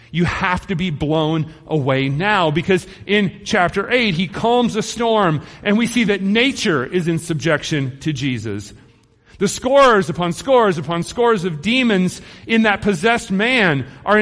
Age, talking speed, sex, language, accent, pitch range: 40-59, 160 wpm, male, English, American, 130-200 Hz